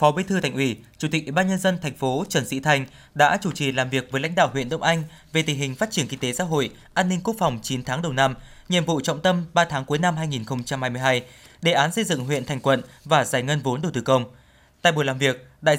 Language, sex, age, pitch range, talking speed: Vietnamese, male, 20-39, 130-170 Hz, 275 wpm